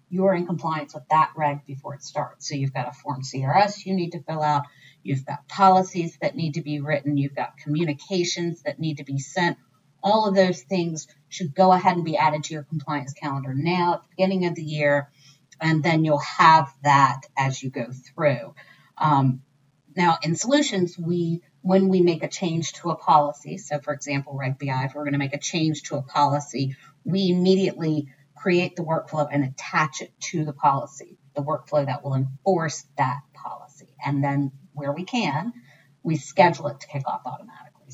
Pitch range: 140-170 Hz